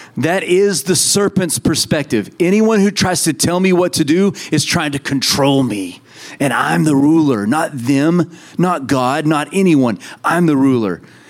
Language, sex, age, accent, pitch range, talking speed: English, male, 30-49, American, 120-160 Hz, 170 wpm